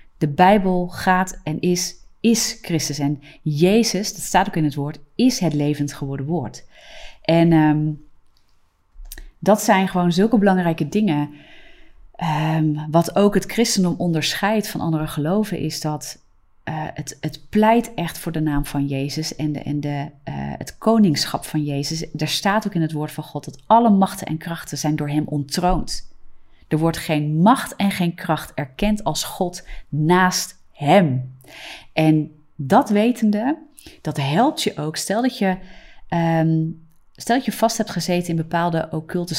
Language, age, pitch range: Dutch, 30-49, 150-190 Hz